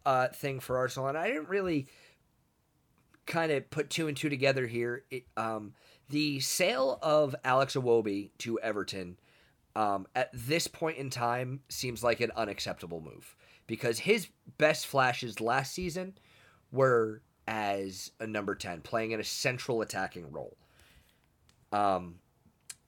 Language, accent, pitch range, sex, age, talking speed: English, American, 110-150 Hz, male, 30-49, 140 wpm